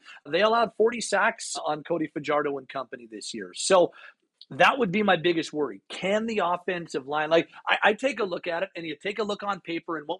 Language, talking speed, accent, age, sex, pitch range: English, 230 wpm, American, 40-59, male, 150-190 Hz